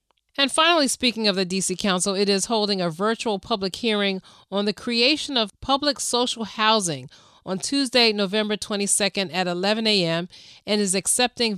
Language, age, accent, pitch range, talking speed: English, 30-49, American, 180-215 Hz, 160 wpm